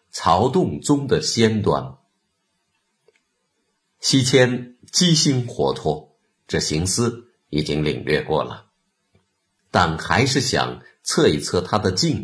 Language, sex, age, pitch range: Chinese, male, 50-69, 85-140 Hz